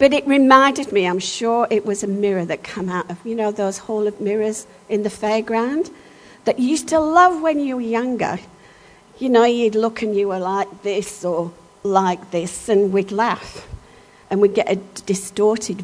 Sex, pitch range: female, 170-210 Hz